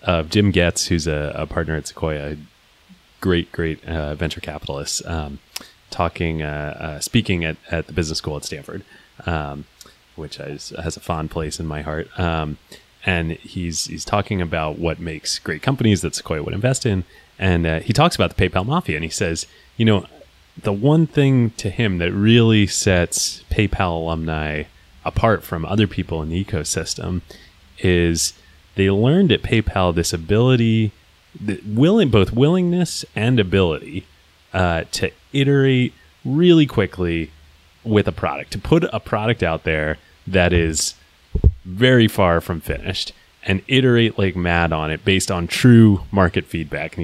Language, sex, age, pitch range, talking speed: English, male, 30-49, 80-110 Hz, 165 wpm